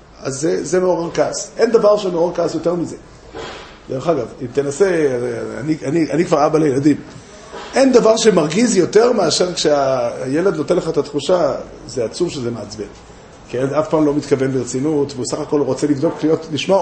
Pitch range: 145-195 Hz